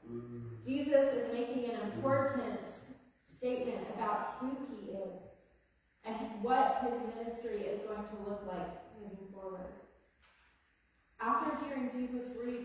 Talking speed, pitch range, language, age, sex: 120 wpm, 205-255 Hz, English, 20-39, female